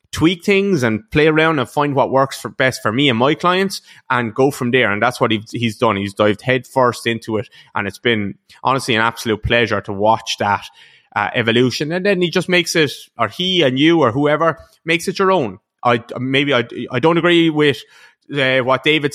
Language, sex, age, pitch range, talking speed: English, male, 20-39, 110-140 Hz, 210 wpm